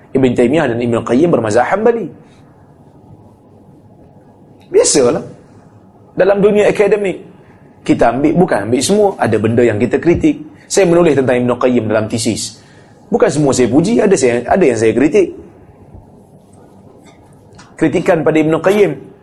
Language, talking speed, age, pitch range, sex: Malay, 130 wpm, 30-49, 115-160 Hz, male